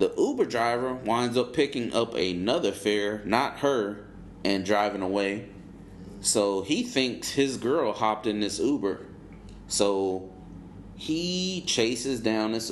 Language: English